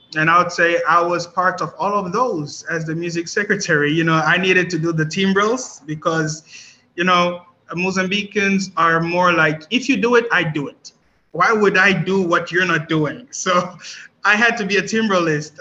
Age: 20-39